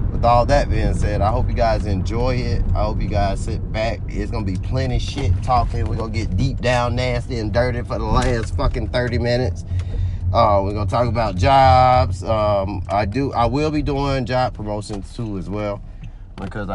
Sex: male